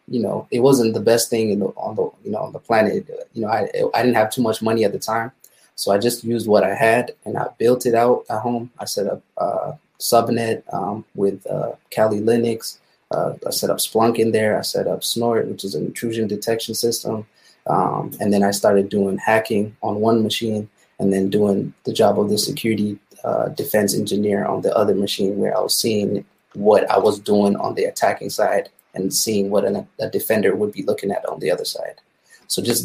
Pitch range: 105-120 Hz